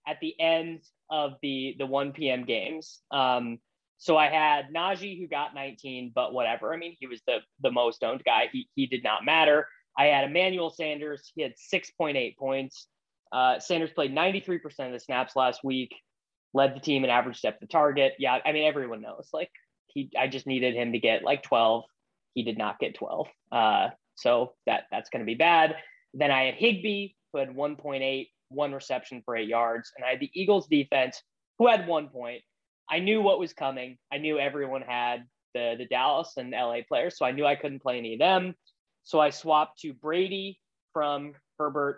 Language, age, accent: English, 20-39, American